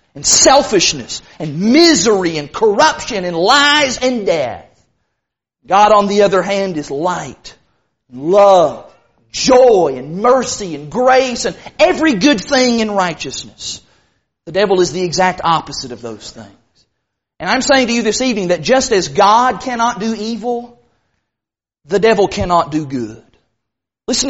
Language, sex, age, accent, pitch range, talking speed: English, male, 40-59, American, 200-285 Hz, 145 wpm